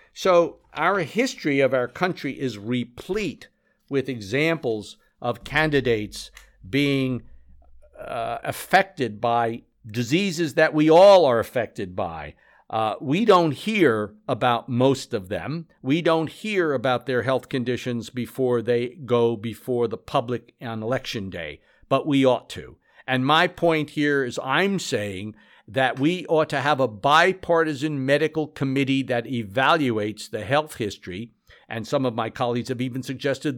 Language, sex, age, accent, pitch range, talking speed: English, male, 50-69, American, 120-155 Hz, 145 wpm